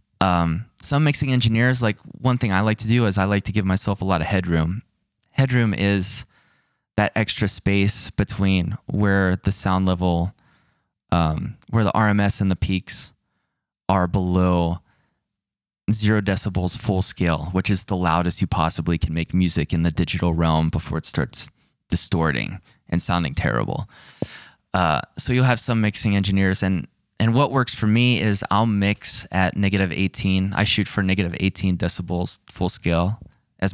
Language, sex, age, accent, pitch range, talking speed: English, male, 20-39, American, 90-110 Hz, 165 wpm